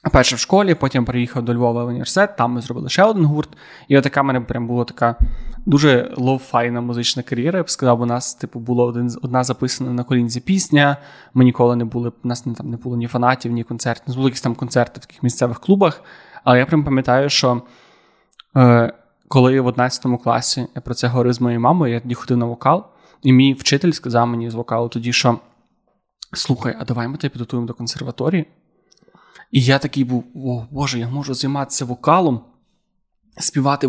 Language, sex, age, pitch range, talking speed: Ukrainian, male, 20-39, 120-145 Hz, 195 wpm